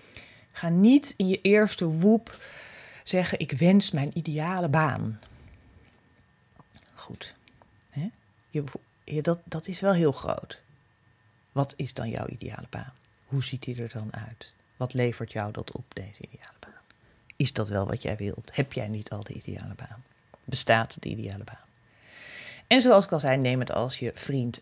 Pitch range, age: 120-200 Hz, 40-59